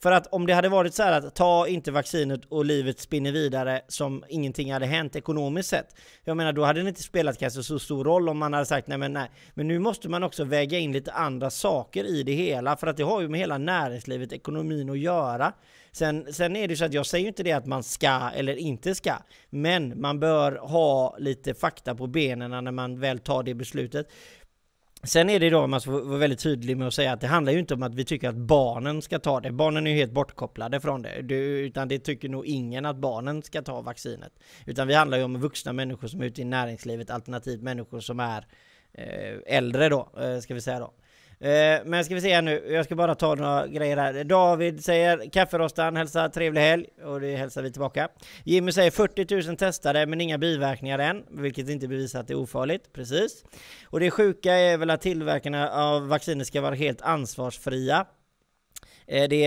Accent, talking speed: native, 220 wpm